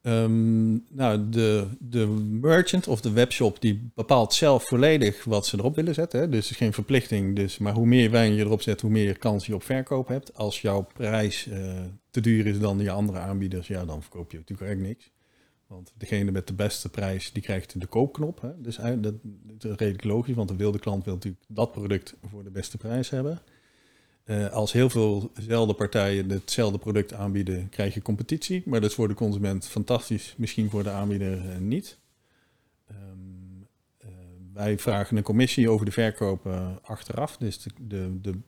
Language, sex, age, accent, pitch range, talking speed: Dutch, male, 50-69, Dutch, 95-115 Hz, 195 wpm